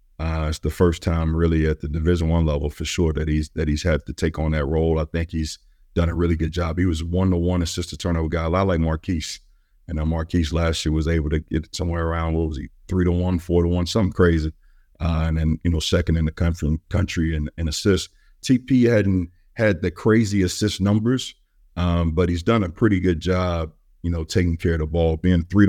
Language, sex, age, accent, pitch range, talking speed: English, male, 50-69, American, 80-95 Hz, 235 wpm